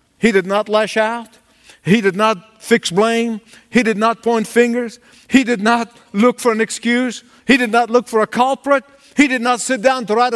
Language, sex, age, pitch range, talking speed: English, male, 50-69, 215-265 Hz, 210 wpm